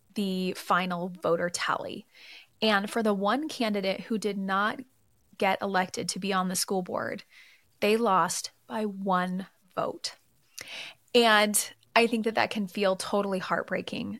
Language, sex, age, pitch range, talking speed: English, female, 20-39, 190-225 Hz, 145 wpm